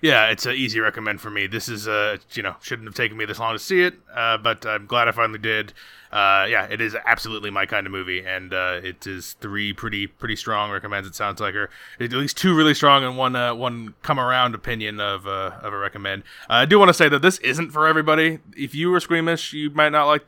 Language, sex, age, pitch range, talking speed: English, male, 20-39, 105-130 Hz, 255 wpm